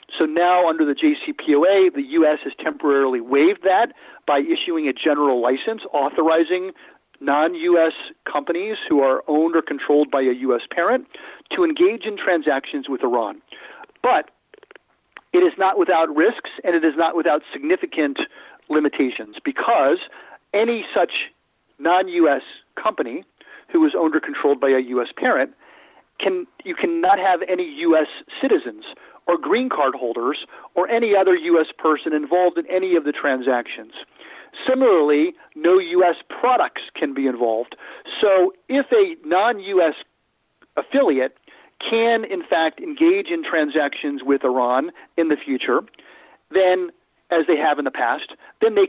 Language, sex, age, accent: English, male, 40-59, American